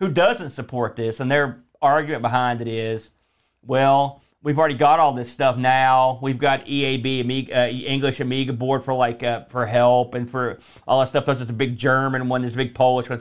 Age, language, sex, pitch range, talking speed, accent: 40-59, English, male, 125-150 Hz, 215 wpm, American